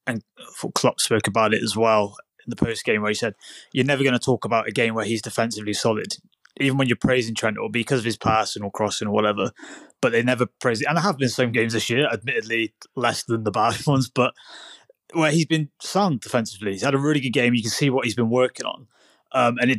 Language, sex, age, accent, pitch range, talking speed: English, male, 20-39, British, 110-130 Hz, 250 wpm